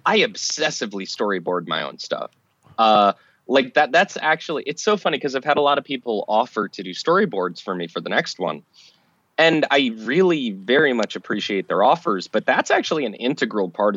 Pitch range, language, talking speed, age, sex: 120-175 Hz, English, 195 wpm, 20-39, male